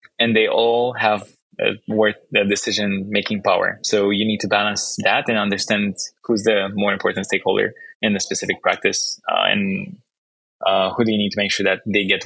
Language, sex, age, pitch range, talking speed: English, male, 20-39, 100-115 Hz, 190 wpm